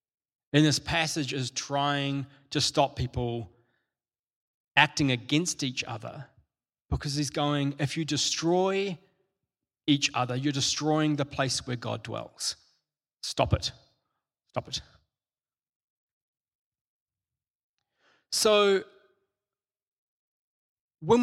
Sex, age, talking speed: male, 20-39, 95 wpm